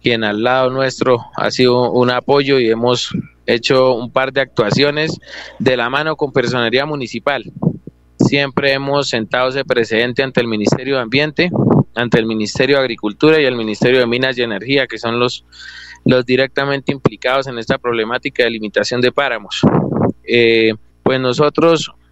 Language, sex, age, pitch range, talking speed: Spanish, male, 20-39, 120-140 Hz, 160 wpm